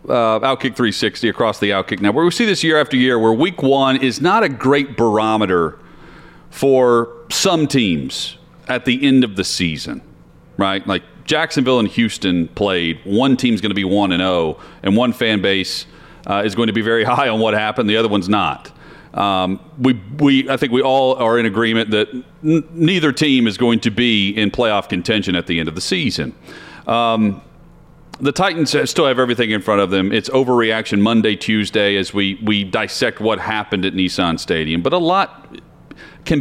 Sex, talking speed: male, 195 wpm